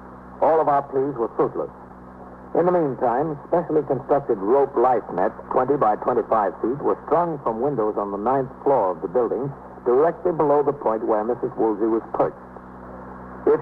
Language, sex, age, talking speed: English, male, 60-79, 170 wpm